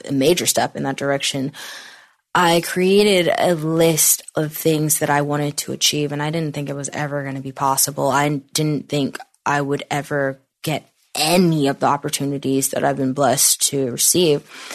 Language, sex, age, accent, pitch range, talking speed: English, female, 10-29, American, 145-190 Hz, 185 wpm